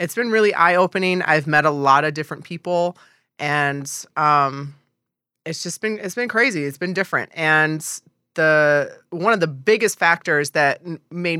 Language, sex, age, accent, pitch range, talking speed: English, female, 20-39, American, 150-175 Hz, 170 wpm